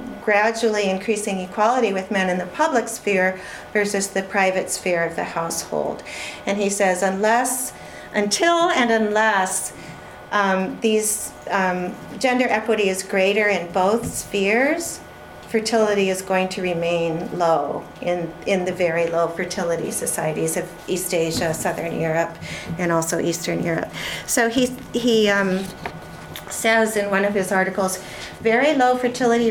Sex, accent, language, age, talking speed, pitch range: female, American, English, 40-59, 140 wpm, 185-225 Hz